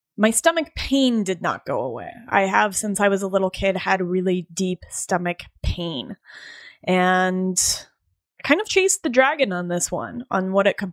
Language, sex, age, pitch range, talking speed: English, female, 20-39, 185-255 Hz, 180 wpm